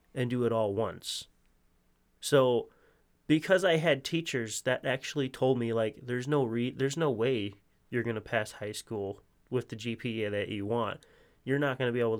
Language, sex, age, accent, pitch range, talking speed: English, male, 30-49, American, 110-135 Hz, 190 wpm